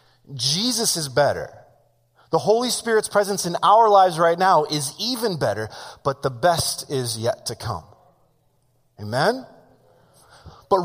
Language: English